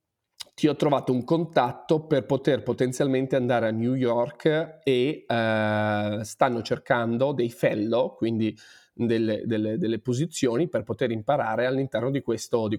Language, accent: Italian, native